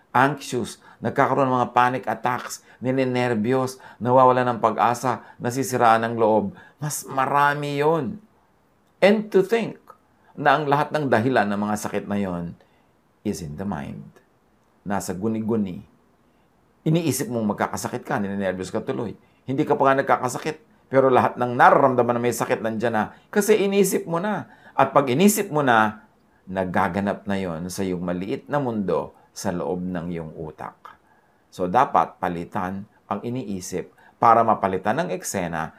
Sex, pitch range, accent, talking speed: male, 100-140 Hz, Filipino, 145 wpm